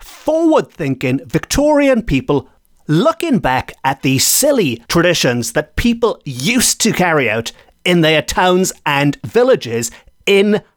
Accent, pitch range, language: British, 135-210 Hz, English